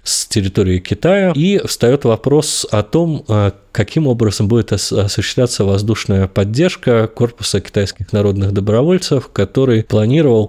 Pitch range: 100-120 Hz